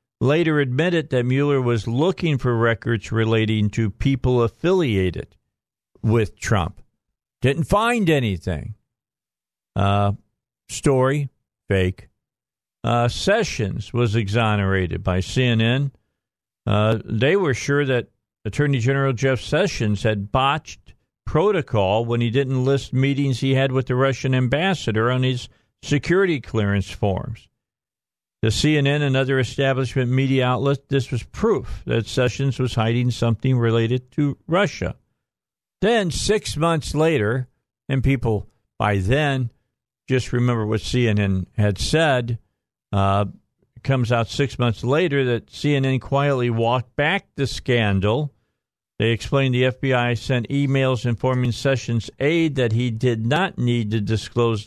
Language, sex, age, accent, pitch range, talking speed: English, male, 50-69, American, 110-135 Hz, 125 wpm